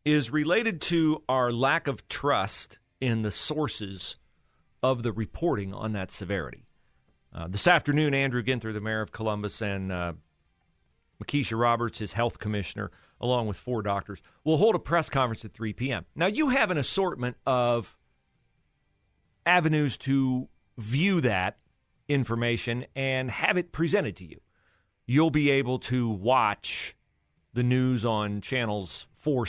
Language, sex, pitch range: English, male, 95-130 Hz